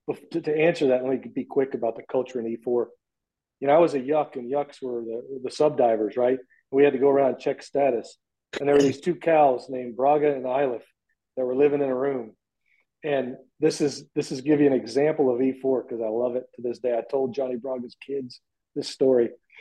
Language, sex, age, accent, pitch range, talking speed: English, male, 40-59, American, 125-160 Hz, 235 wpm